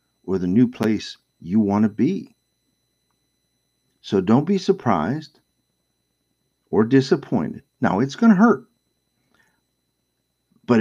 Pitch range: 85-130 Hz